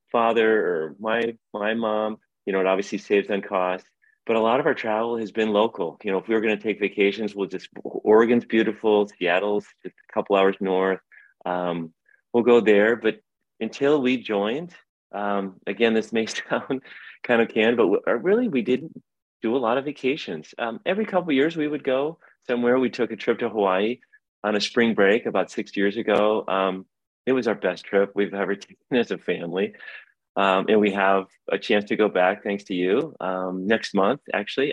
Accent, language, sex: American, English, male